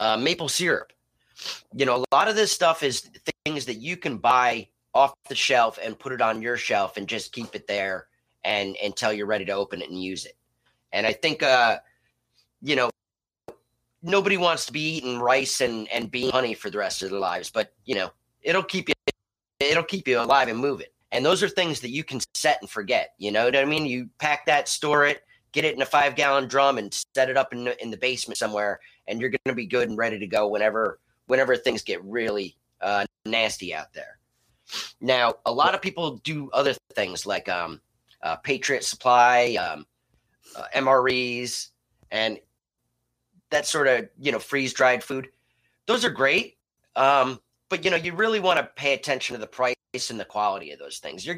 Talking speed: 205 wpm